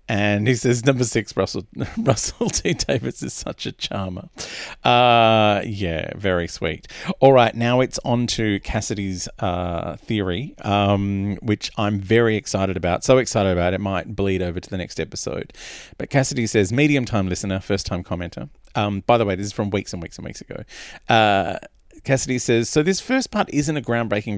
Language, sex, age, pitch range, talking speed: English, male, 40-59, 100-135 Hz, 180 wpm